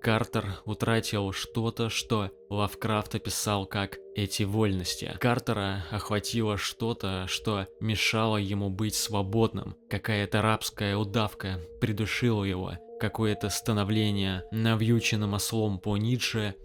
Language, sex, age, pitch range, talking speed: Russian, male, 20-39, 95-115 Hz, 100 wpm